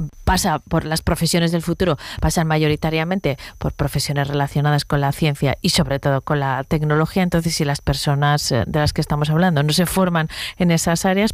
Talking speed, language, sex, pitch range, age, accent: 185 wpm, Spanish, female, 150-185 Hz, 30-49, Spanish